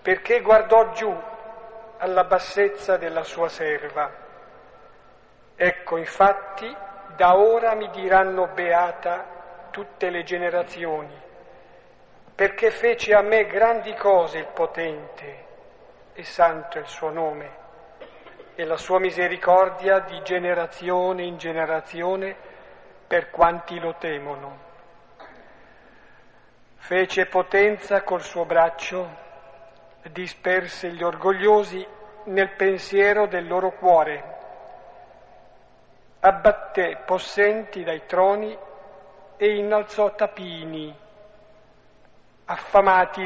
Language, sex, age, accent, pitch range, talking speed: Italian, male, 50-69, native, 170-195 Hz, 90 wpm